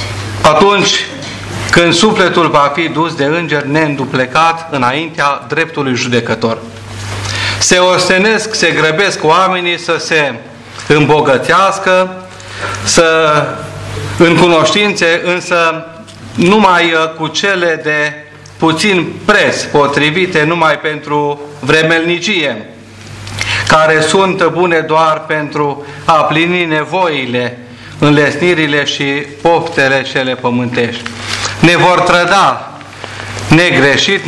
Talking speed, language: 90 wpm, Romanian